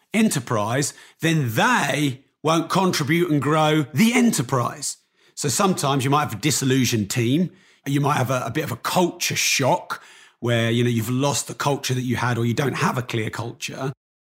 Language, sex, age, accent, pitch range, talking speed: English, male, 40-59, British, 125-165 Hz, 185 wpm